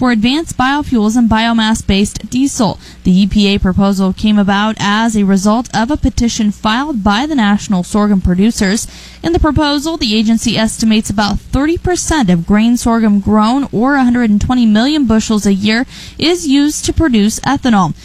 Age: 10-29